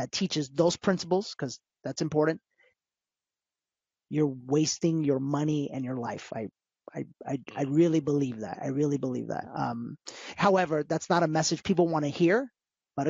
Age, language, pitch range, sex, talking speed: 30-49, English, 150-185 Hz, male, 165 wpm